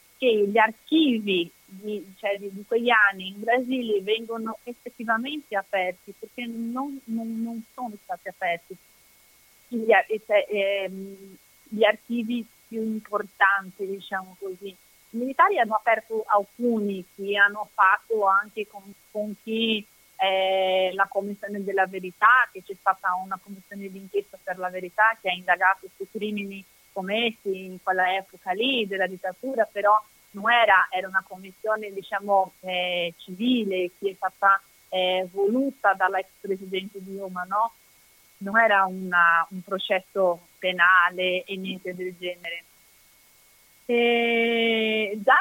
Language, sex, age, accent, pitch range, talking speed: Italian, female, 30-49, native, 190-225 Hz, 125 wpm